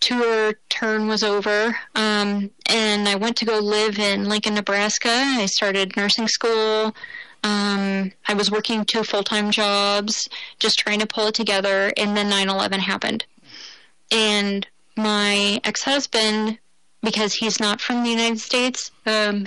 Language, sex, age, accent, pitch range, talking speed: English, female, 20-39, American, 200-225 Hz, 140 wpm